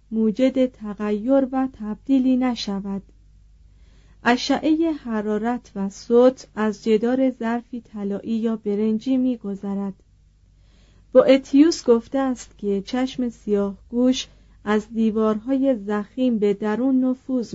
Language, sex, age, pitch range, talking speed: Persian, female, 40-59, 205-250 Hz, 105 wpm